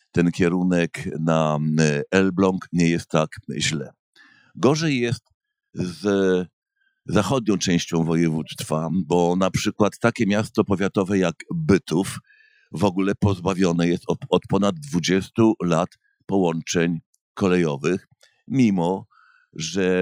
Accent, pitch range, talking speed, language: native, 85-105 Hz, 105 wpm, Polish